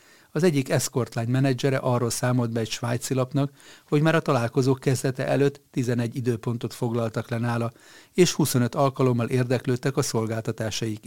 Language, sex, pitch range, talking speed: Hungarian, male, 115-140 Hz, 145 wpm